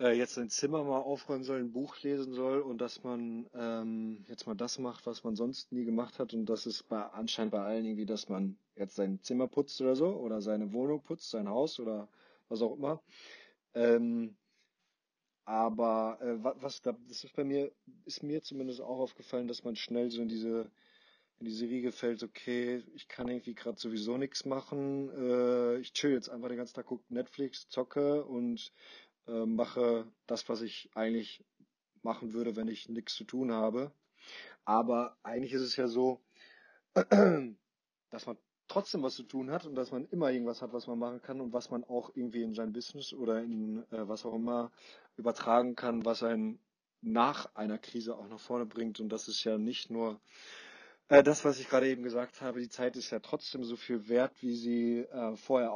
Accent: German